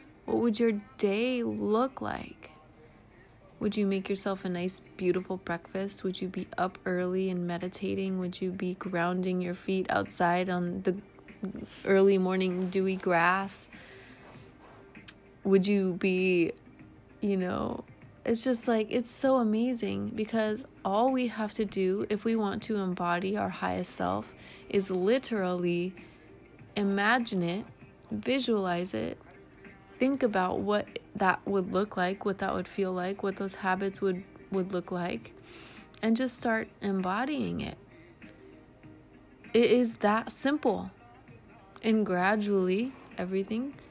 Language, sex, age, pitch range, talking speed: English, female, 20-39, 180-220 Hz, 130 wpm